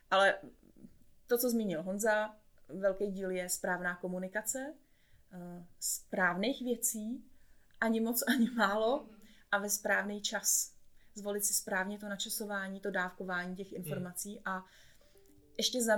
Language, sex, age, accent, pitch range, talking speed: Czech, female, 20-39, native, 200-245 Hz, 120 wpm